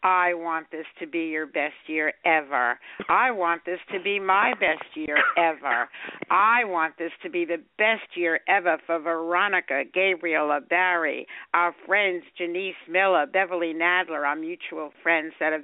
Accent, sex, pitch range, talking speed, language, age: American, female, 160-210 Hz, 160 wpm, English, 60-79